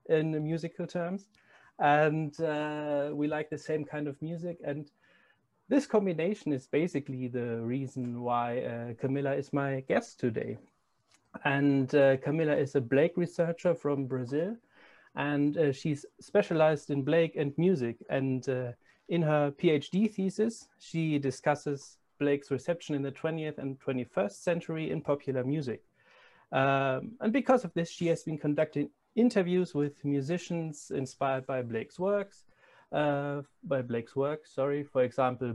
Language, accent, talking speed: English, German, 145 wpm